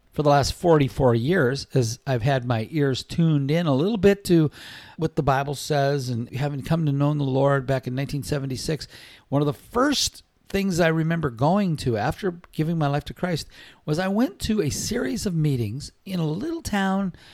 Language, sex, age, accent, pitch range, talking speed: English, male, 50-69, American, 130-170 Hz, 195 wpm